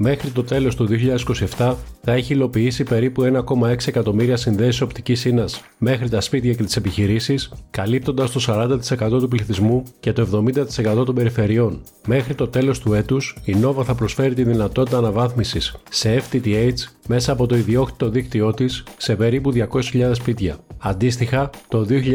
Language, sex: Greek, male